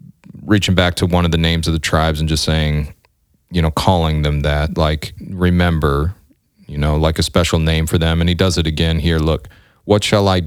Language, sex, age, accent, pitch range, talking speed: English, male, 30-49, American, 75-90 Hz, 220 wpm